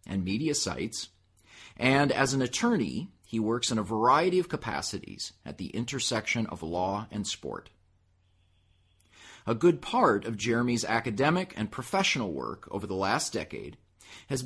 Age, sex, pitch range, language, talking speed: 30-49, male, 95-145 Hz, English, 145 wpm